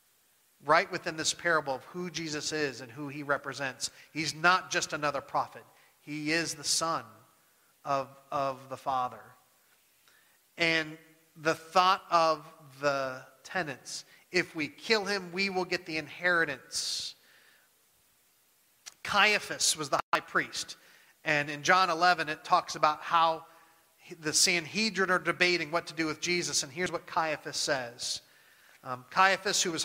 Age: 40-59